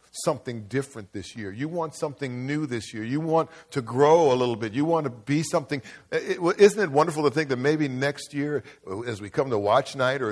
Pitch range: 115-145 Hz